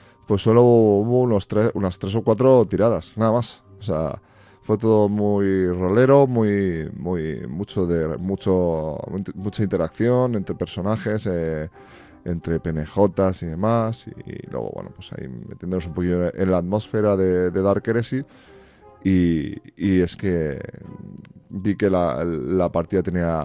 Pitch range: 85-105 Hz